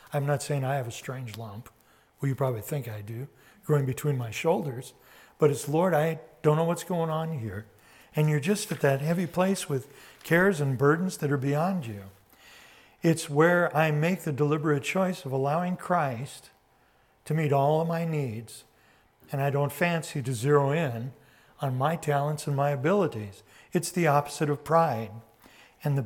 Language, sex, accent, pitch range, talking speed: English, male, American, 135-165 Hz, 180 wpm